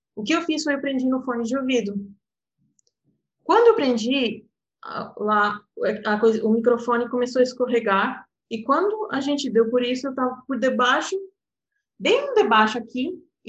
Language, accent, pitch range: Portuguese, Brazilian, 195-265 Hz